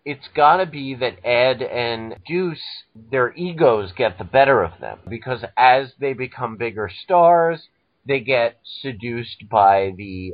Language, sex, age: English, male, 30-49